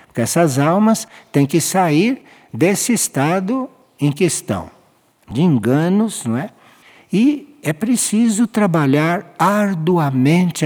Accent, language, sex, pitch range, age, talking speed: Brazilian, Portuguese, male, 130-200 Hz, 60-79, 105 wpm